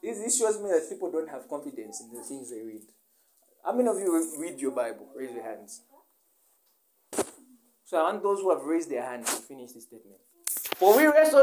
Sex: male